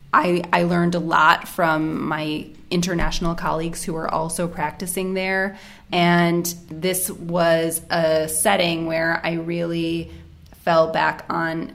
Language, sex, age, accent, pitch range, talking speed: English, female, 20-39, American, 160-175 Hz, 130 wpm